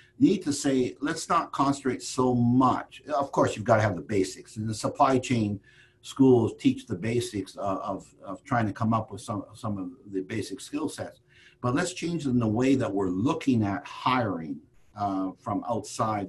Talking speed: 195 wpm